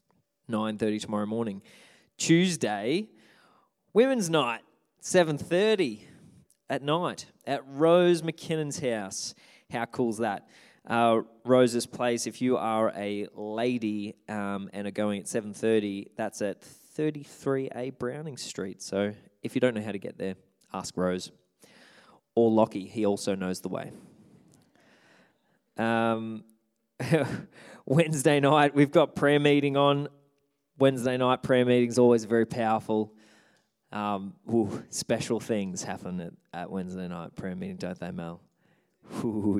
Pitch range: 100-130 Hz